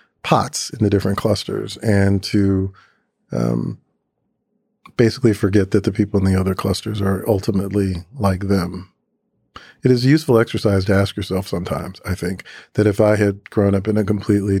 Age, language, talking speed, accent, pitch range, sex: 40-59, English, 170 wpm, American, 95-110 Hz, male